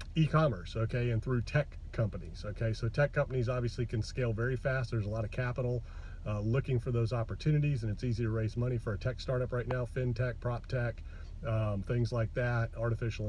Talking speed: 195 wpm